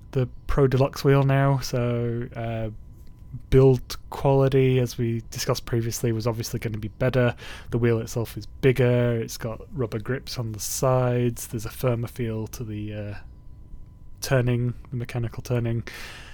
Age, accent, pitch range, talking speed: 20-39, British, 110-125 Hz, 155 wpm